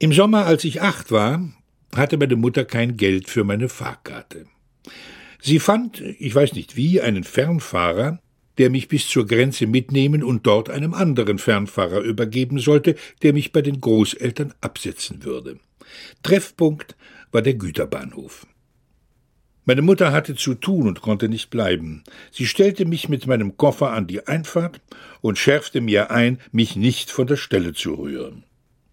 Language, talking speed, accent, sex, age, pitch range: German, 155 wpm, German, male, 60-79, 110-145 Hz